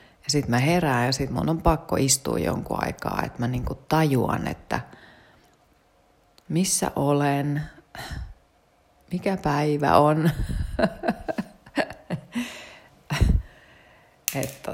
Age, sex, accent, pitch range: 30-49, female, native, 110-160 Hz